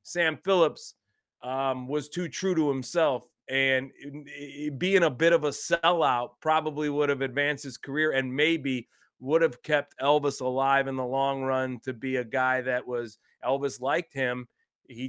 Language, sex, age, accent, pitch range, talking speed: English, male, 30-49, American, 130-155 Hz, 165 wpm